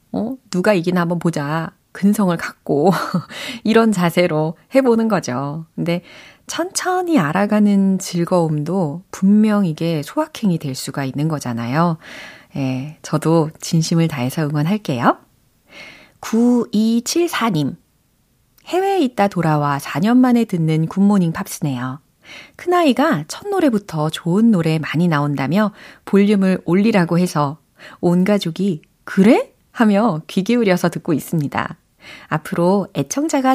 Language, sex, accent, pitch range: Korean, female, native, 155-220 Hz